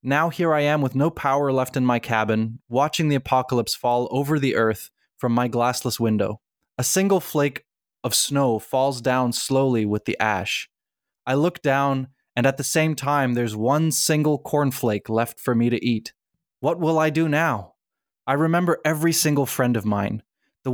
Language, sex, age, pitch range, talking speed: English, male, 20-39, 120-150 Hz, 180 wpm